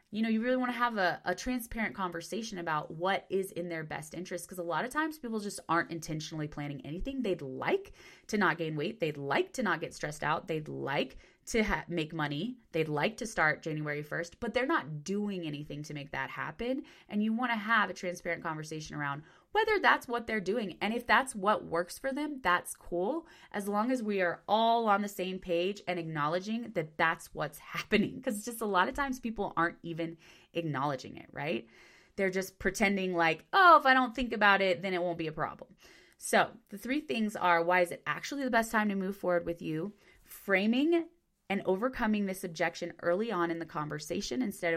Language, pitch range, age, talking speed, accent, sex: English, 165-225 Hz, 20-39, 210 wpm, American, female